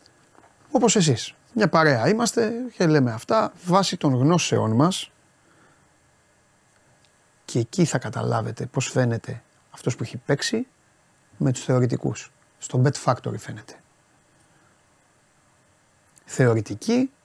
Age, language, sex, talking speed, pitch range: 30-49, Greek, male, 105 wpm, 125-175 Hz